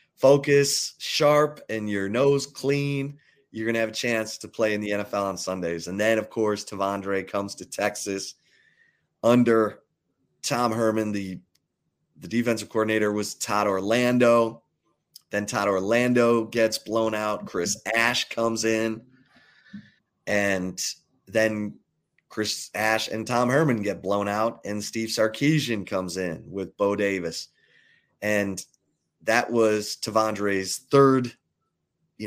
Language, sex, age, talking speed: English, male, 30-49, 130 wpm